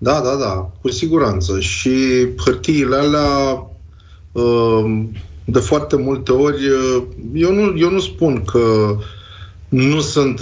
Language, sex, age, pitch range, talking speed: Romanian, male, 30-49, 110-145 Hz, 115 wpm